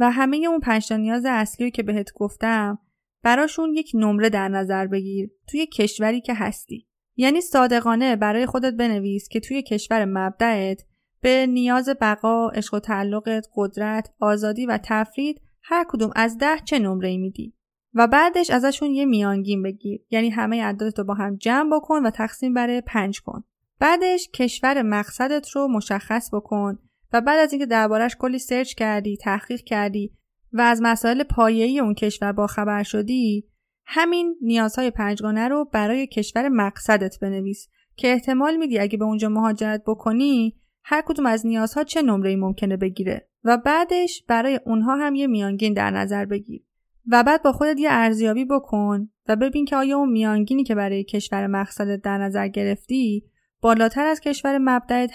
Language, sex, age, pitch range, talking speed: Persian, female, 30-49, 210-260 Hz, 160 wpm